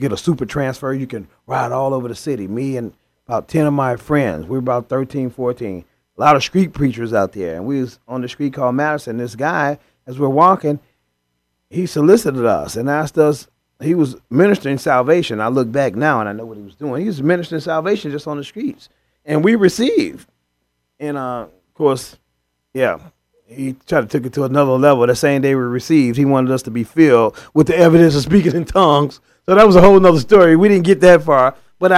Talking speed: 220 wpm